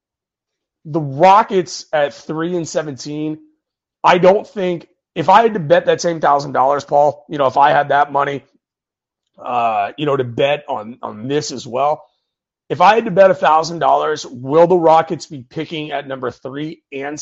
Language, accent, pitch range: English, American, 140-170 Hz